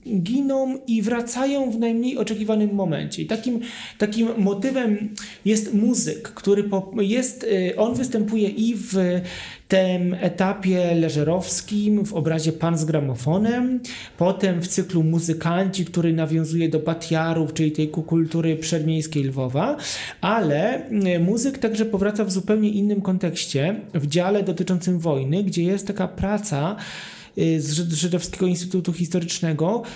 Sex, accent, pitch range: male, native, 165-210 Hz